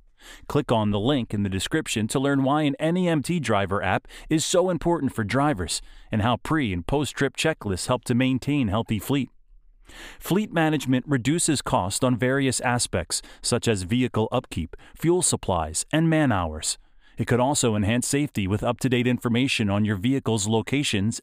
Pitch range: 110-150 Hz